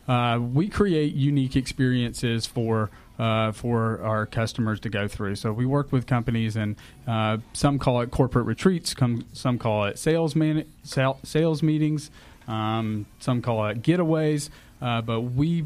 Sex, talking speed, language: male, 160 wpm, English